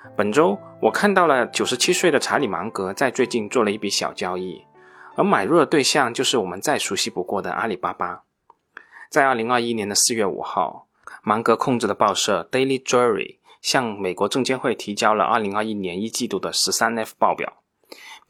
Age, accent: 20-39, native